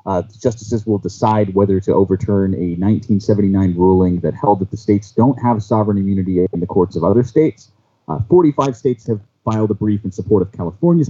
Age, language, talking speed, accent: 30-49, English, 200 wpm, American